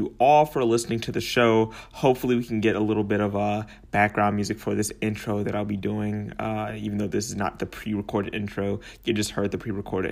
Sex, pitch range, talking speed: male, 105-125 Hz, 230 wpm